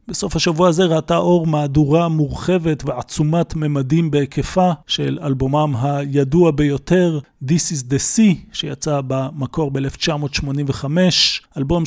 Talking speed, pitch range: 110 wpm, 140-165 Hz